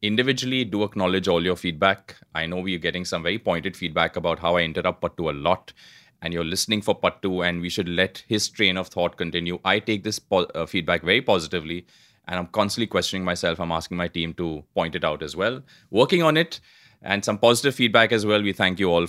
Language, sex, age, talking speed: English, male, 30-49, 225 wpm